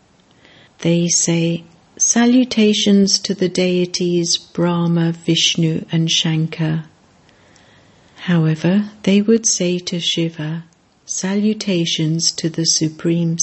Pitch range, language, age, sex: 165-195 Hz, English, 60-79, female